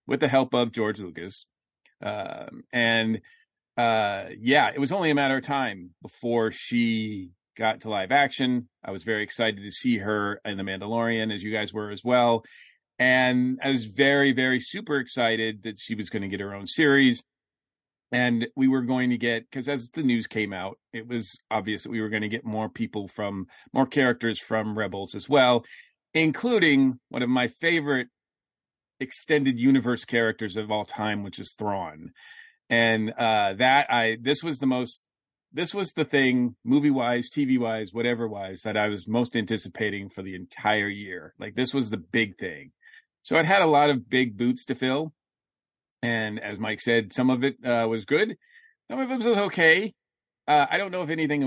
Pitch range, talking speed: 110-135 Hz, 190 wpm